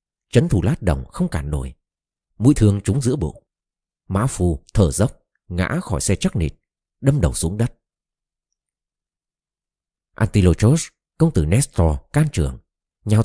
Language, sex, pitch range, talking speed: Vietnamese, male, 85-110 Hz, 145 wpm